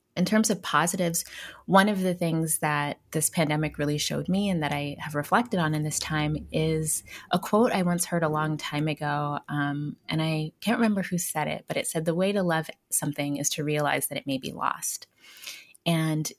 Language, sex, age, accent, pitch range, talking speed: English, female, 20-39, American, 145-180 Hz, 210 wpm